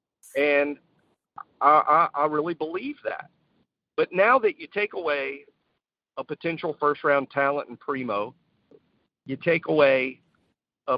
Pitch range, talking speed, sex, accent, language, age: 130-175 Hz, 125 wpm, male, American, English, 50-69